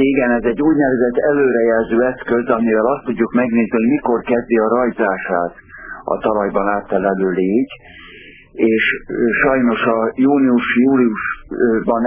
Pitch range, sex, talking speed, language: 100-120 Hz, male, 110 wpm, Hungarian